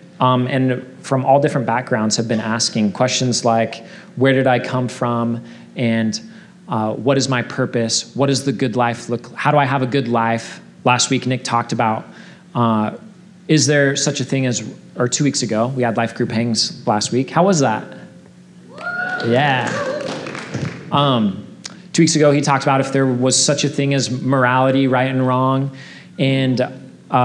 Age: 30-49